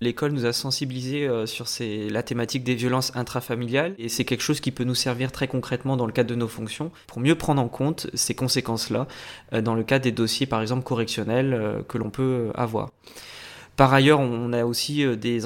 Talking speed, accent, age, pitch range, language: 200 wpm, French, 20-39, 115-140 Hz, French